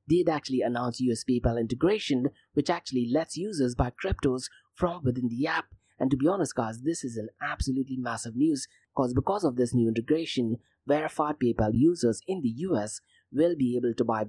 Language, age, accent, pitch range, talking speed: English, 30-49, Indian, 115-150 Hz, 185 wpm